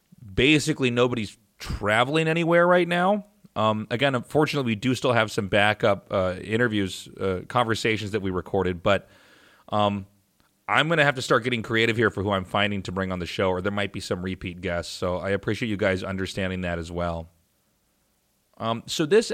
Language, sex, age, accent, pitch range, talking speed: English, male, 30-49, American, 100-125 Hz, 190 wpm